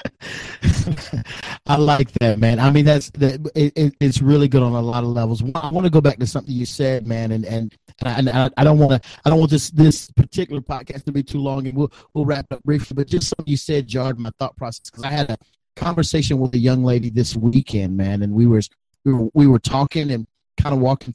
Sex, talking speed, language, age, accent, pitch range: male, 250 wpm, English, 30-49, American, 115-140 Hz